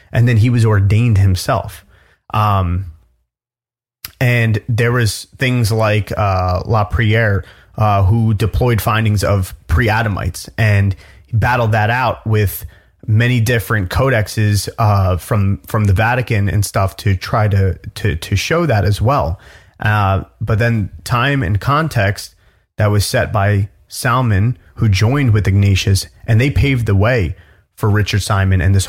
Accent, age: American, 30-49